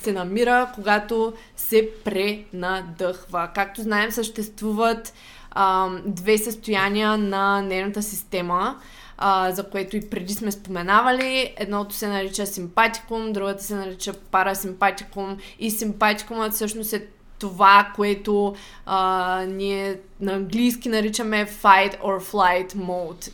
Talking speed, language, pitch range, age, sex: 115 wpm, Bulgarian, 200-225 Hz, 20-39, female